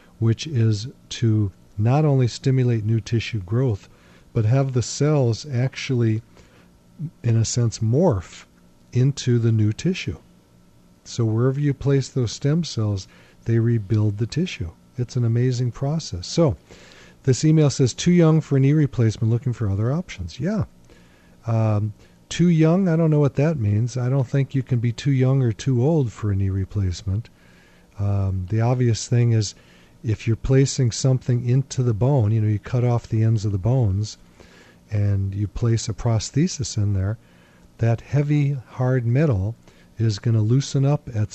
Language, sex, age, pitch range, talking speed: English, male, 40-59, 100-130 Hz, 165 wpm